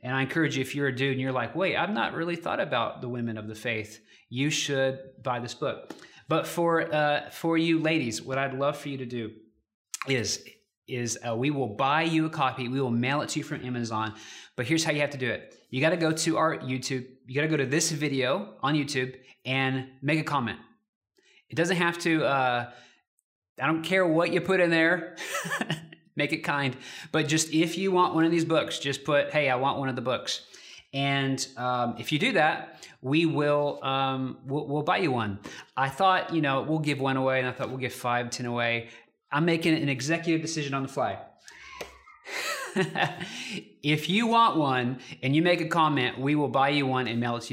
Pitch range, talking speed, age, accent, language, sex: 125-160 Hz, 220 wpm, 20-39, American, English, male